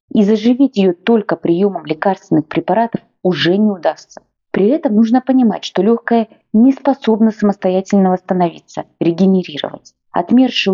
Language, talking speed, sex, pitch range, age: Russian, 125 wpm, female, 180-235 Hz, 20-39